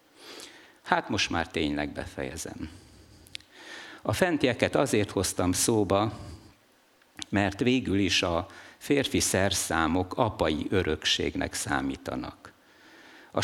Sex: male